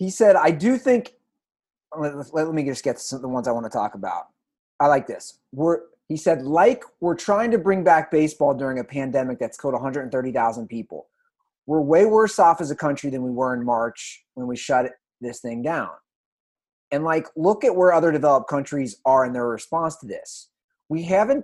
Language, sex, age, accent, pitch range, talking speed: English, male, 30-49, American, 135-200 Hz, 200 wpm